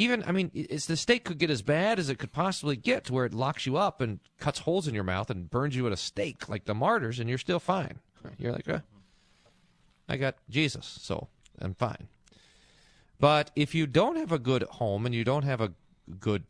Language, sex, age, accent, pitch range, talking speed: English, male, 40-59, American, 115-165 Hz, 230 wpm